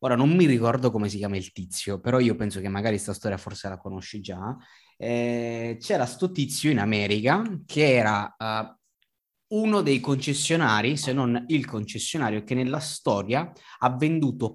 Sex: male